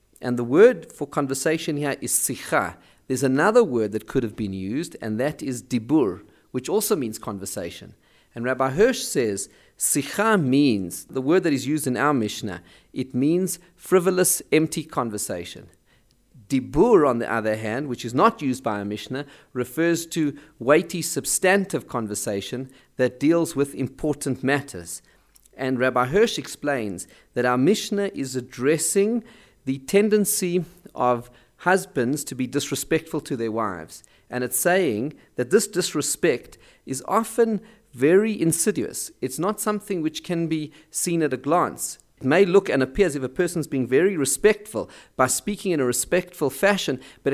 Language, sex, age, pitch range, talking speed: English, male, 40-59, 125-180 Hz, 155 wpm